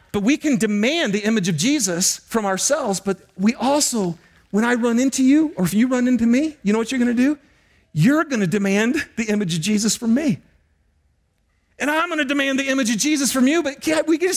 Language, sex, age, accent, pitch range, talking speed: English, male, 40-59, American, 160-245 Hz, 220 wpm